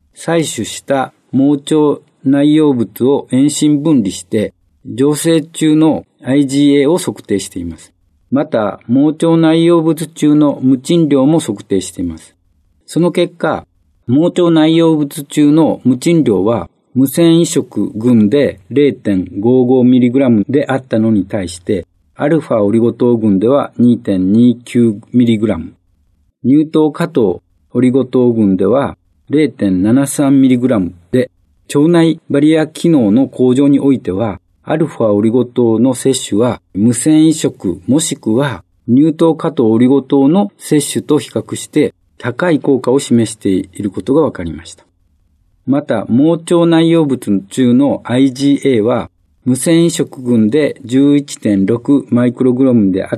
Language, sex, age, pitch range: Japanese, male, 50-69, 105-150 Hz